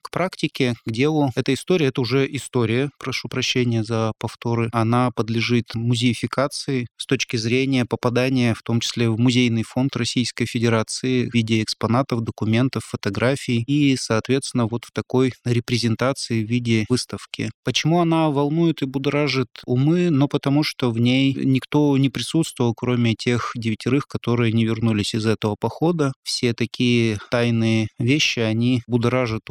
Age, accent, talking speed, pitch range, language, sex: 20-39, native, 145 wpm, 115-135 Hz, Russian, male